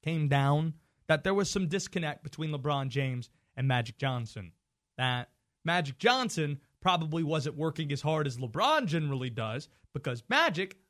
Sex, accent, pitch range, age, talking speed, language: male, American, 125-180 Hz, 30-49, 150 wpm, English